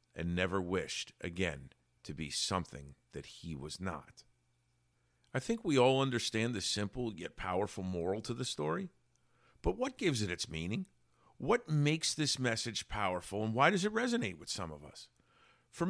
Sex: male